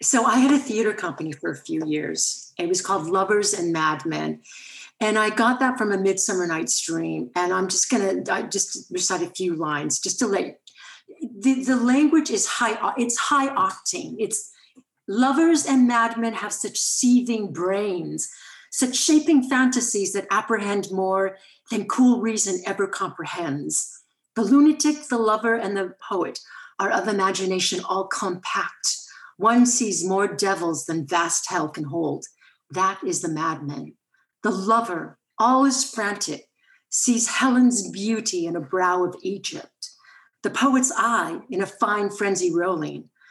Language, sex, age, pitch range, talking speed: English, female, 50-69, 185-250 Hz, 150 wpm